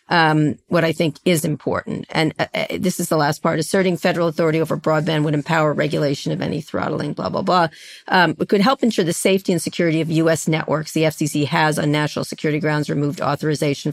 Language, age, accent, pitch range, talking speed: English, 40-59, American, 155-190 Hz, 210 wpm